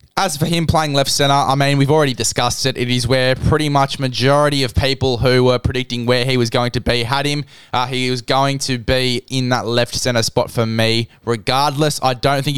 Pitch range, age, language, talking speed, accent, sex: 120-140 Hz, 10-29, English, 230 wpm, Australian, male